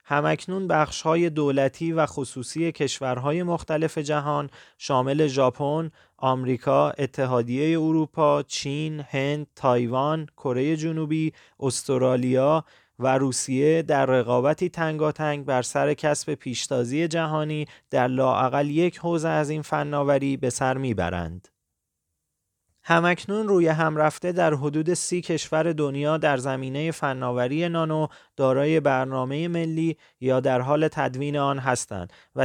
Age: 30-49